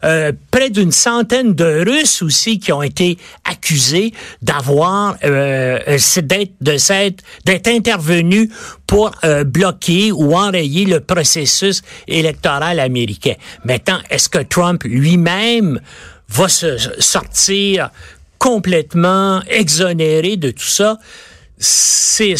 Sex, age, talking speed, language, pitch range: male, 60-79, 110 wpm, French, 155-220 Hz